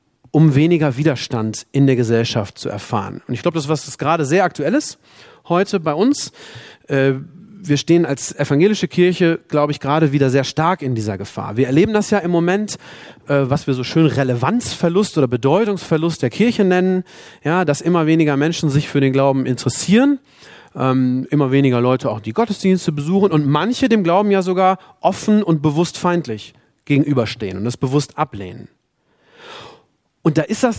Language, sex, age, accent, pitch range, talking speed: German, male, 30-49, German, 140-185 Hz, 170 wpm